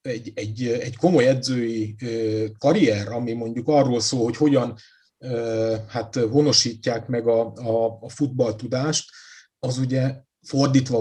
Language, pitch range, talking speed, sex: Hungarian, 115-155 Hz, 120 wpm, male